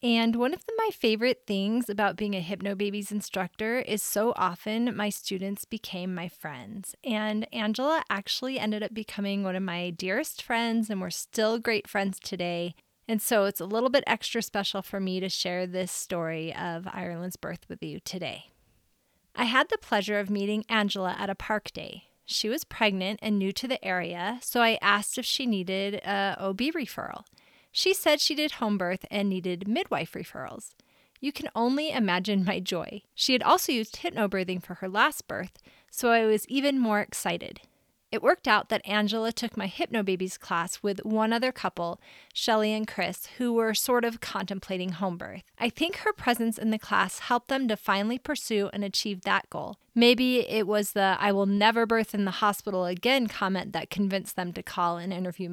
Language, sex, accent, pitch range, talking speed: English, female, American, 190-230 Hz, 190 wpm